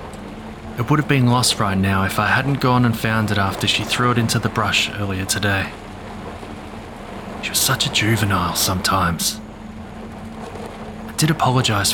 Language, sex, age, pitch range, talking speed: English, male, 20-39, 100-115 Hz, 160 wpm